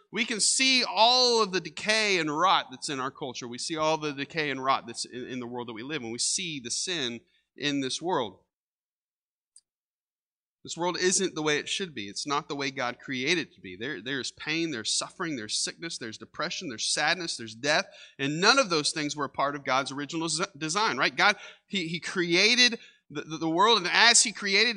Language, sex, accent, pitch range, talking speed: English, male, American, 120-185 Hz, 220 wpm